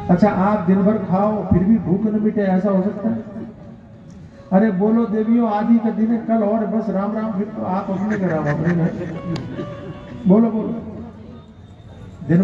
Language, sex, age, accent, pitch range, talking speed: Hindi, male, 50-69, native, 160-220 Hz, 160 wpm